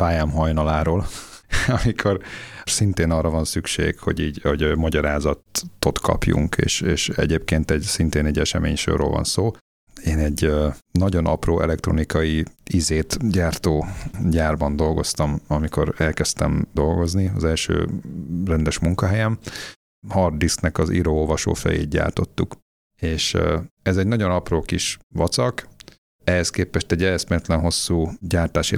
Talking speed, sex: 120 wpm, male